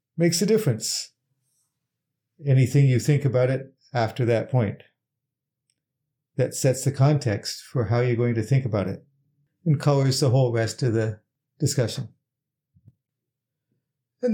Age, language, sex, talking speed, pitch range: 50-69, English, male, 135 wpm, 125-145 Hz